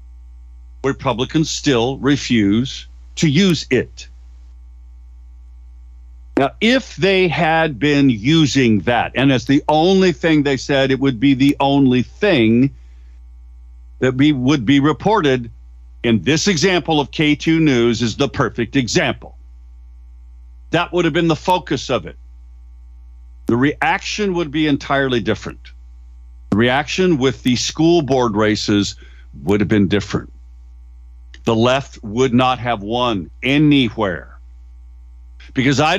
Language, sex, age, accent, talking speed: English, male, 50-69, American, 125 wpm